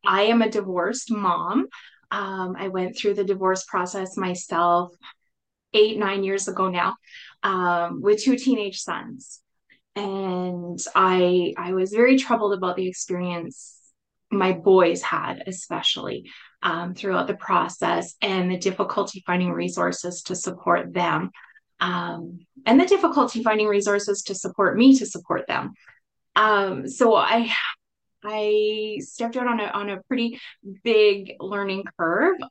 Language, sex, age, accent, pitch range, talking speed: English, female, 20-39, American, 180-215 Hz, 135 wpm